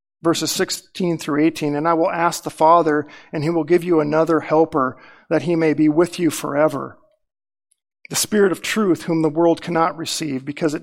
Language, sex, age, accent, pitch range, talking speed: English, male, 50-69, American, 150-180 Hz, 195 wpm